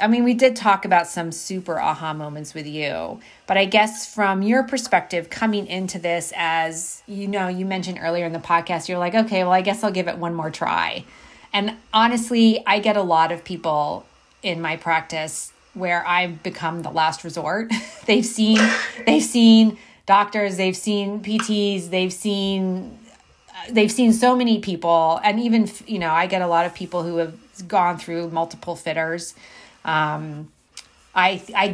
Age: 30-49